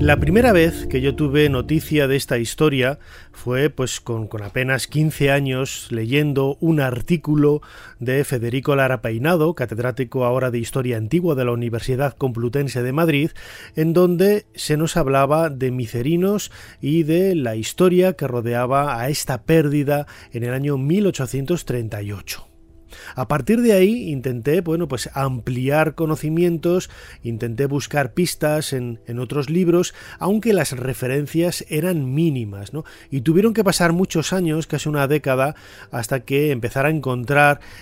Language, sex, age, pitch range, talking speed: Spanish, male, 30-49, 125-155 Hz, 145 wpm